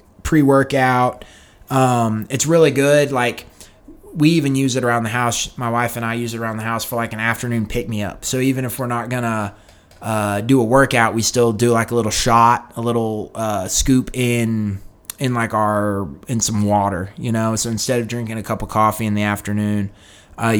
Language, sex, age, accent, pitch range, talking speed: English, male, 20-39, American, 105-125 Hz, 200 wpm